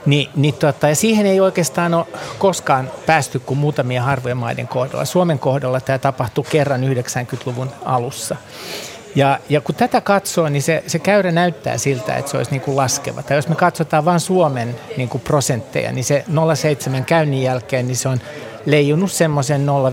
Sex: male